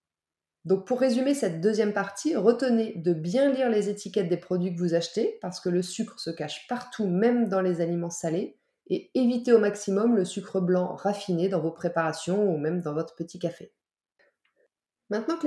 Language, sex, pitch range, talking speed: French, female, 185-240 Hz, 185 wpm